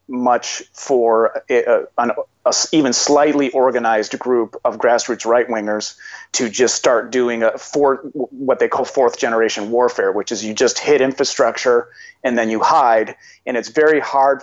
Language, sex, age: English, male, 30-49